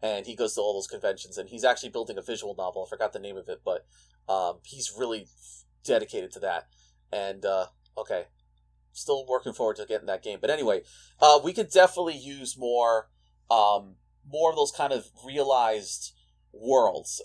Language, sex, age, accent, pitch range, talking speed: English, male, 30-49, American, 95-135 Hz, 190 wpm